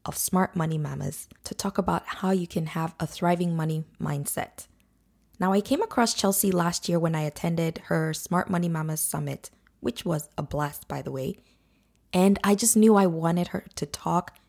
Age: 20-39